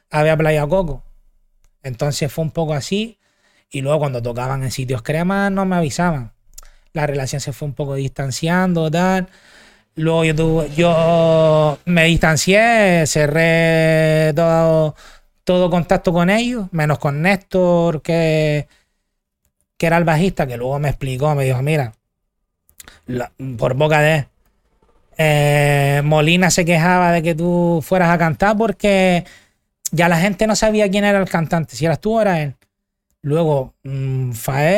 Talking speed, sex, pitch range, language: 145 wpm, male, 145-185 Hz, Spanish